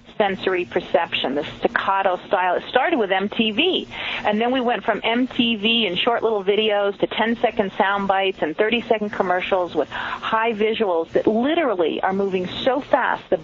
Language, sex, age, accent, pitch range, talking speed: English, female, 40-59, American, 175-220 Hz, 160 wpm